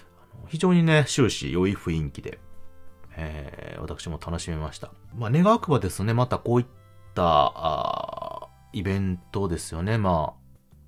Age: 30-49